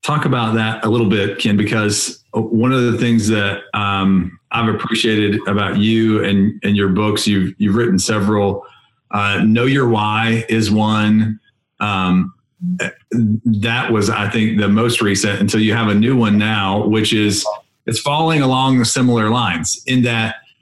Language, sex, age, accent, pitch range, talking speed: English, male, 30-49, American, 100-120 Hz, 165 wpm